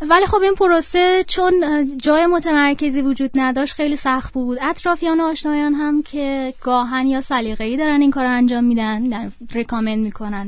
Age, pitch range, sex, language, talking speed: 20-39, 235-295 Hz, female, Persian, 150 wpm